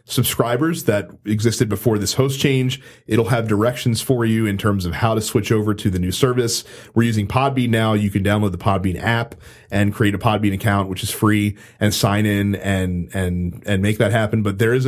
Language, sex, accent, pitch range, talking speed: English, male, American, 105-130 Hz, 210 wpm